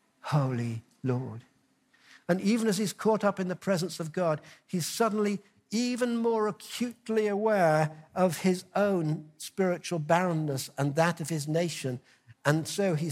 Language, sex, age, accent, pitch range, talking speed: English, male, 60-79, British, 155-215 Hz, 145 wpm